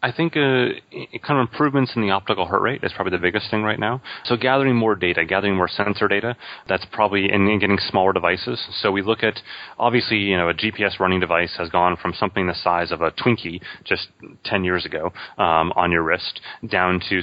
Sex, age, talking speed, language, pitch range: male, 30-49, 215 wpm, English, 90-110 Hz